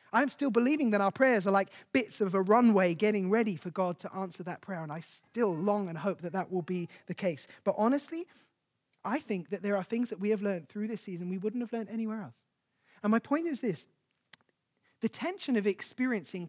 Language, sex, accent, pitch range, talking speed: English, male, British, 175-225 Hz, 225 wpm